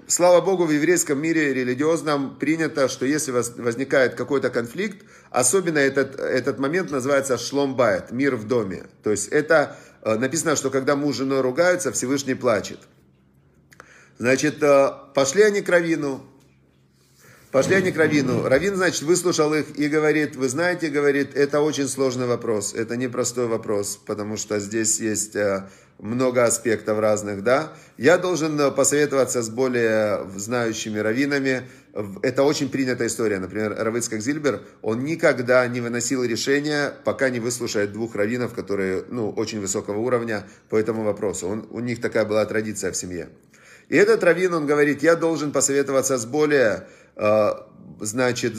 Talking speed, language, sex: 145 wpm, Russian, male